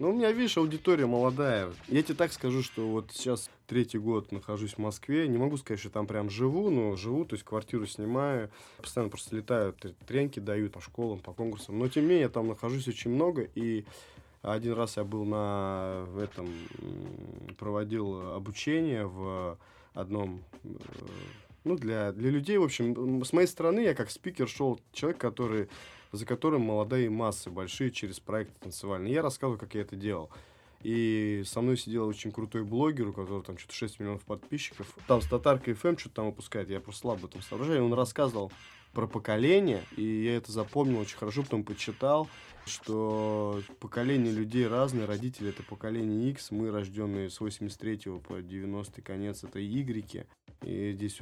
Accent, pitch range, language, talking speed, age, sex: native, 100-125 Hz, Russian, 170 wpm, 20-39, male